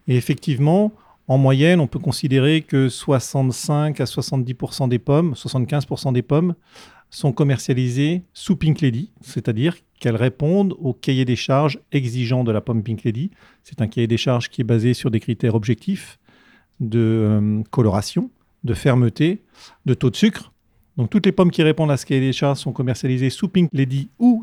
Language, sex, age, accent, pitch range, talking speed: French, male, 40-59, French, 120-155 Hz, 175 wpm